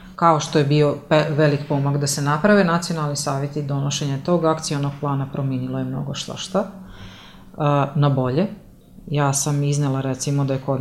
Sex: female